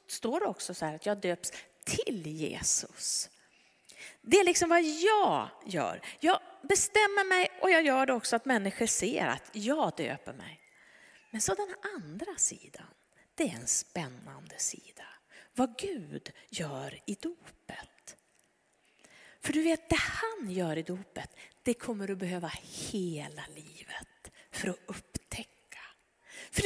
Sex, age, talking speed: female, 30-49, 145 wpm